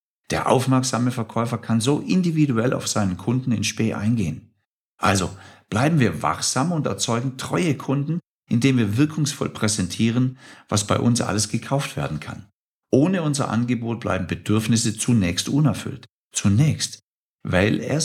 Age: 50-69